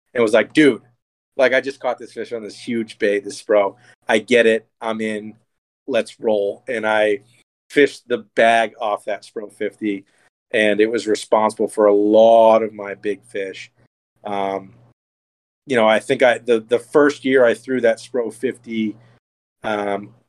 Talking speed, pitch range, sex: 175 wpm, 105-120 Hz, male